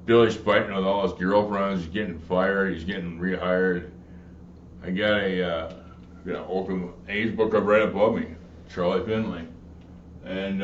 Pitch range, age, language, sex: 90-115 Hz, 60-79, English, male